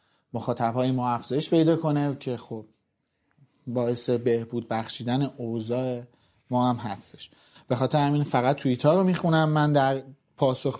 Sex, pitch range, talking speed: male, 130-165 Hz, 135 wpm